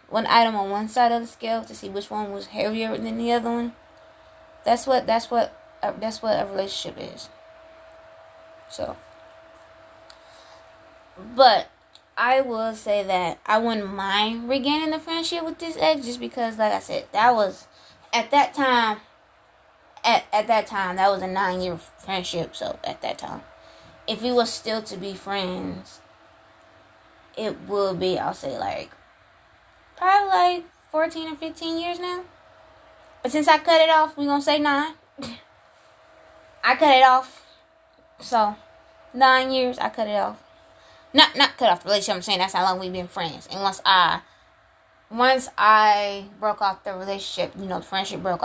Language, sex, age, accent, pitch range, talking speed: English, female, 20-39, American, 195-305 Hz, 165 wpm